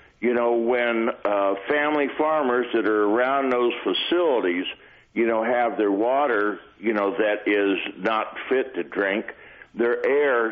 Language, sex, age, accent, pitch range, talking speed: English, male, 60-79, American, 110-140 Hz, 150 wpm